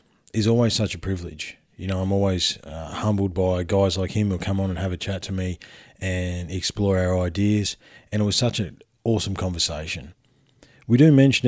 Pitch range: 90-105 Hz